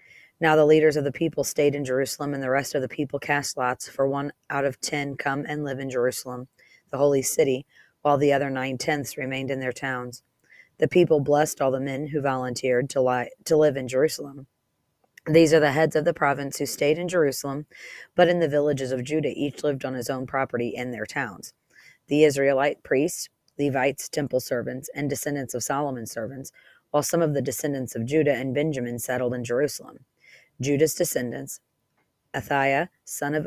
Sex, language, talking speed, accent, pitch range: female, English, 185 wpm, American, 130-155 Hz